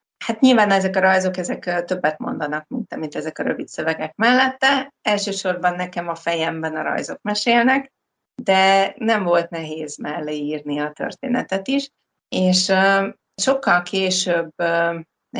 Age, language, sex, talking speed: 30-49, Hungarian, female, 140 wpm